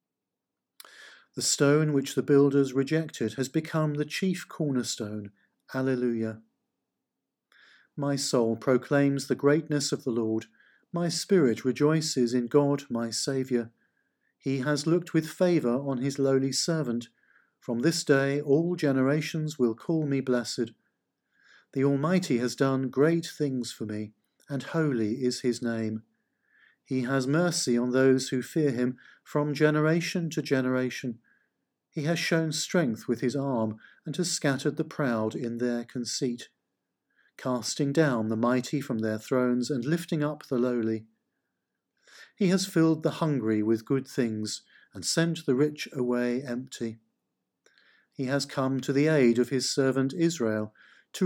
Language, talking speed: English, 145 wpm